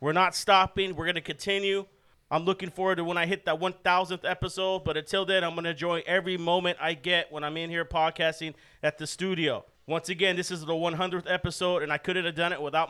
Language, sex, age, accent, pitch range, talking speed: English, male, 40-59, American, 160-180 Hz, 235 wpm